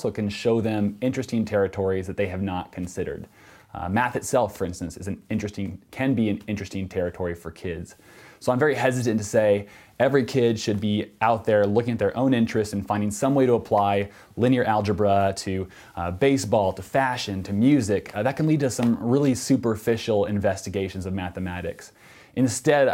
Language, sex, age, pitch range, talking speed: English, male, 20-39, 100-125 Hz, 185 wpm